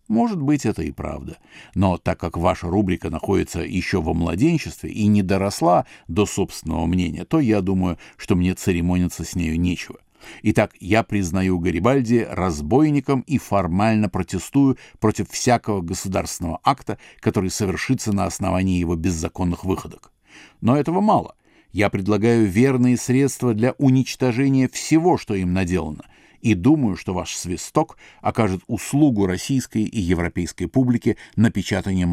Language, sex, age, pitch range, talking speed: Russian, male, 50-69, 90-130 Hz, 135 wpm